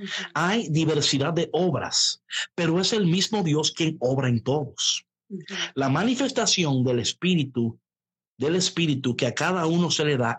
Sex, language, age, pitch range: male, Spanish, 50-69, 125-185 Hz